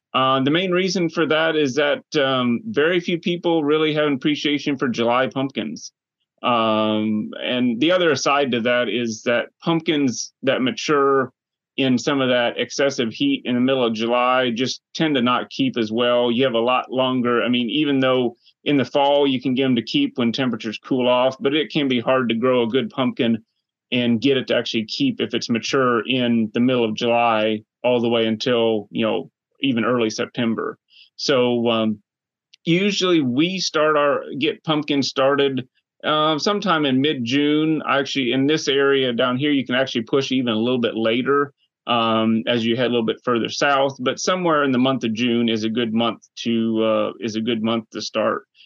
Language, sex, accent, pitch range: English, male, American, 115-145 Hz